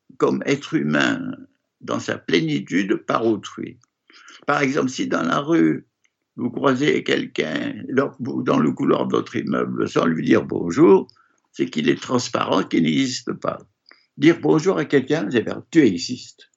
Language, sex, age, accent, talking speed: French, male, 60-79, French, 150 wpm